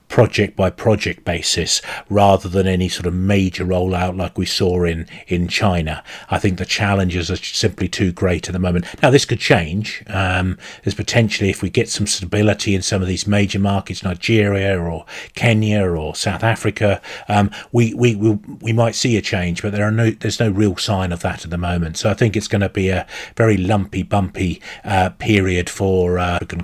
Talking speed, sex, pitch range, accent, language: 205 wpm, male, 90-110 Hz, British, English